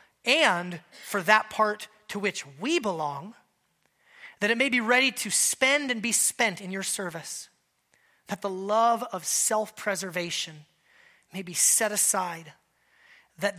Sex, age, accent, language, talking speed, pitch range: male, 30-49, American, English, 140 wpm, 170-215 Hz